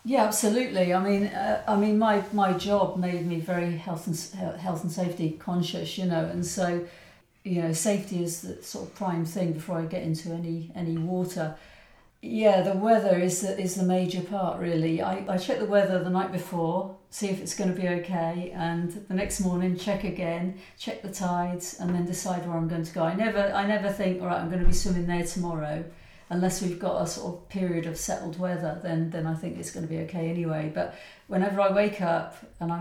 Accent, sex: British, female